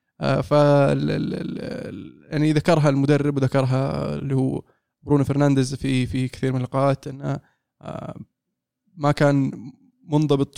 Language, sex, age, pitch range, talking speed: Arabic, male, 20-39, 135-150 Hz, 100 wpm